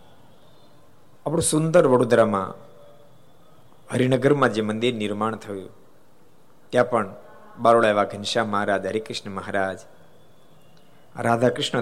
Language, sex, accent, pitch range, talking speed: Gujarati, male, native, 105-165 Hz, 85 wpm